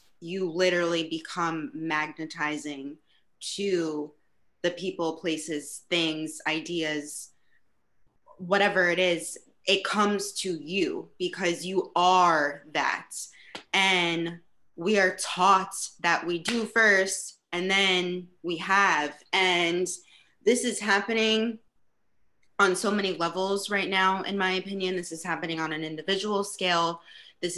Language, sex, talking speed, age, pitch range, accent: English, female, 120 wpm, 20-39, 170-195 Hz, American